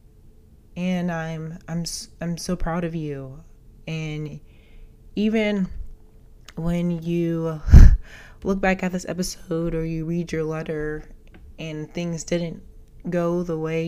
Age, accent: 20-39, American